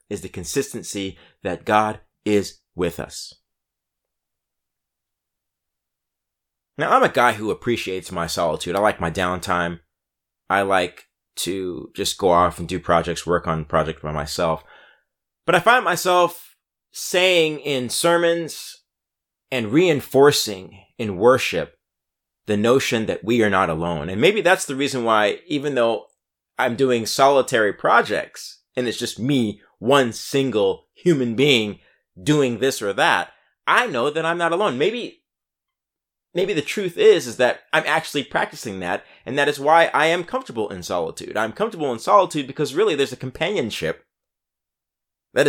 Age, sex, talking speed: 30-49, male, 150 wpm